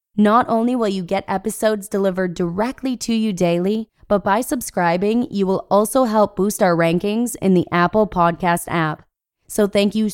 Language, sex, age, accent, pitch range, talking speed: English, female, 20-39, American, 170-215 Hz, 170 wpm